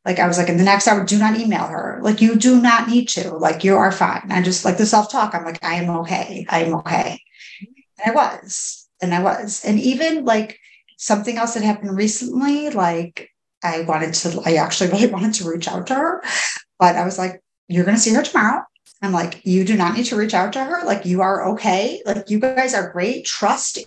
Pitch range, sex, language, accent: 175-220 Hz, female, English, American